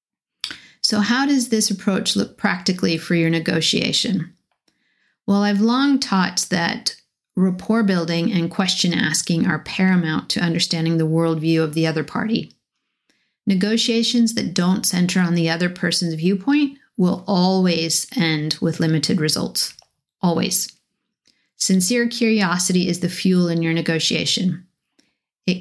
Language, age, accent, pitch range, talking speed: English, 40-59, American, 170-215 Hz, 130 wpm